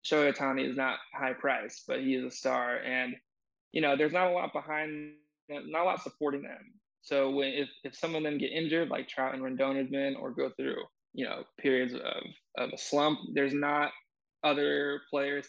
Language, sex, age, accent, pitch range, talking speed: English, male, 20-39, American, 135-150 Hz, 205 wpm